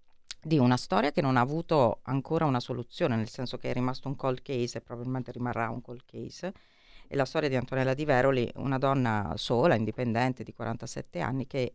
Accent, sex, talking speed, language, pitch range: native, female, 200 wpm, Italian, 120-145 Hz